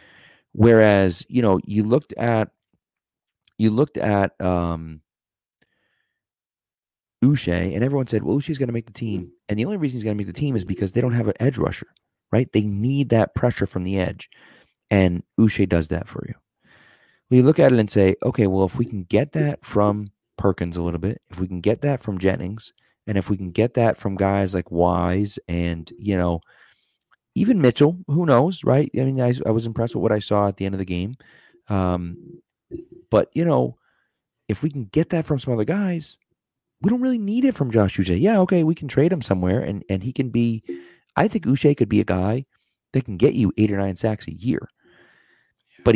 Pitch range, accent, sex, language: 95-125 Hz, American, male, English